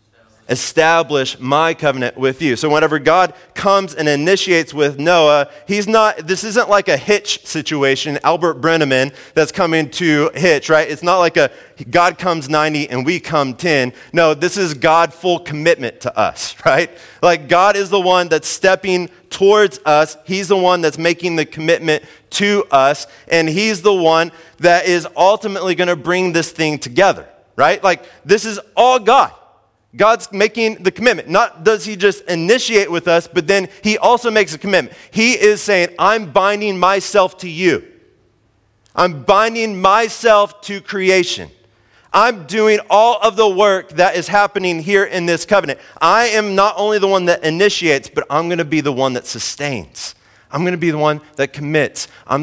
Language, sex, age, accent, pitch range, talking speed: English, male, 30-49, American, 150-200 Hz, 175 wpm